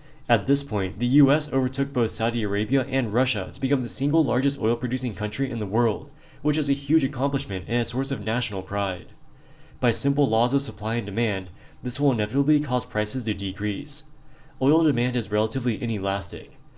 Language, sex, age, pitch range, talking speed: English, male, 20-39, 105-135 Hz, 180 wpm